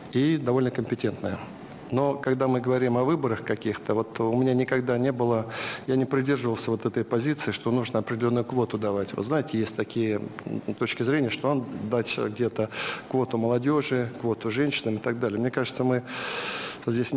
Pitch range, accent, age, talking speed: 110-130 Hz, native, 50-69, 170 wpm